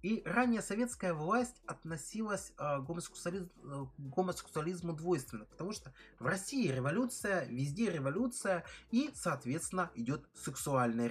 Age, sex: 20-39, male